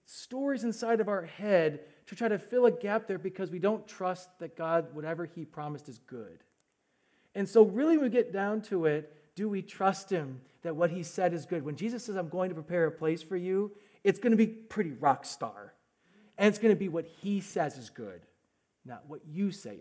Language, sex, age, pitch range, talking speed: English, male, 40-59, 155-210 Hz, 225 wpm